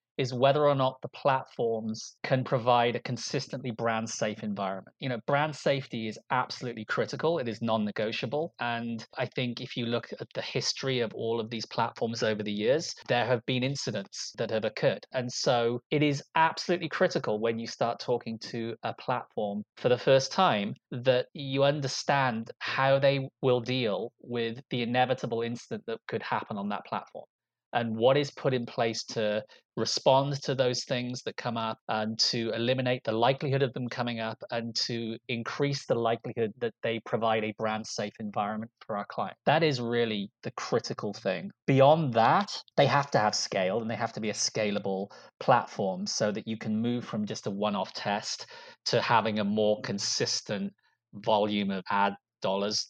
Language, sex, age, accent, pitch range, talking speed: English, male, 20-39, British, 110-135 Hz, 180 wpm